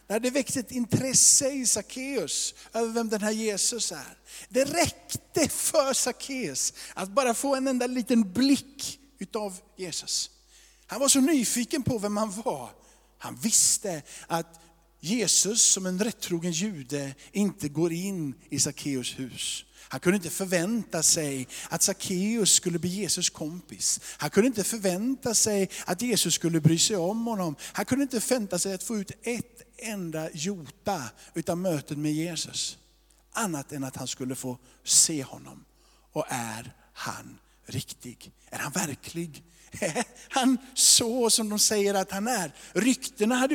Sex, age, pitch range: male, 50-69, 160-230 Hz